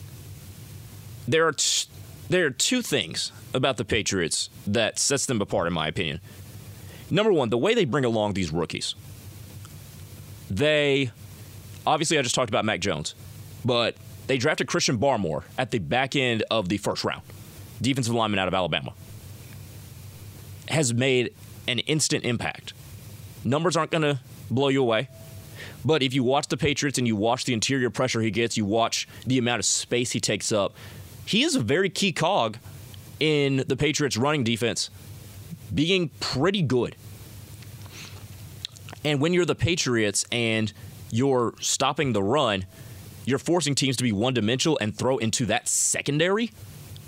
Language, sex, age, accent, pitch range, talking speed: English, male, 30-49, American, 105-135 Hz, 155 wpm